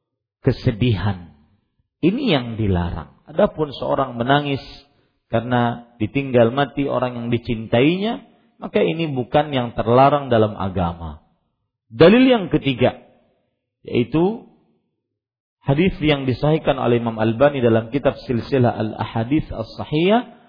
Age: 40-59